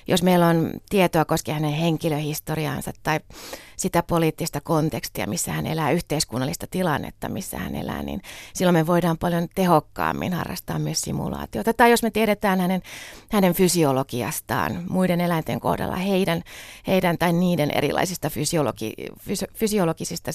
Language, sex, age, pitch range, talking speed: Finnish, female, 30-49, 155-185 Hz, 130 wpm